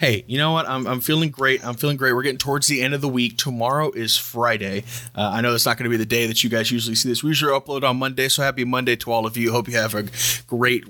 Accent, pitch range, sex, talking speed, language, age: American, 115-140 Hz, male, 305 wpm, English, 30-49